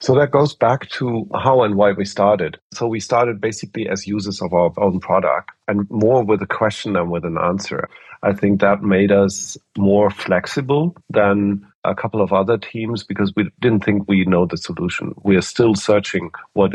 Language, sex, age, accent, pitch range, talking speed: English, male, 50-69, German, 95-110 Hz, 195 wpm